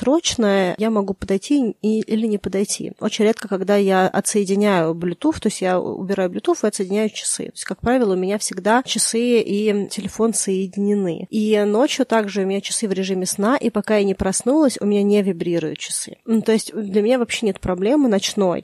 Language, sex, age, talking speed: Russian, female, 20-39, 195 wpm